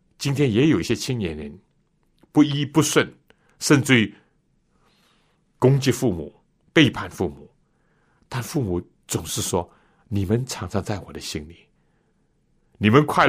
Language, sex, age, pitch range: Chinese, male, 60-79, 95-160 Hz